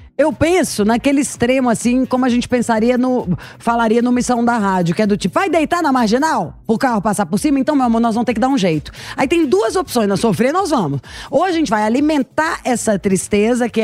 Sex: female